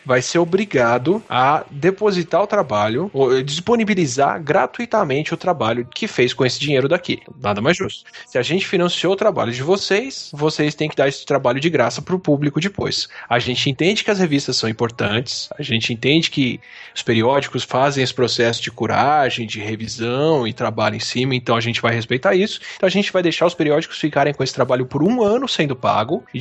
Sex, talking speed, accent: male, 200 wpm, Brazilian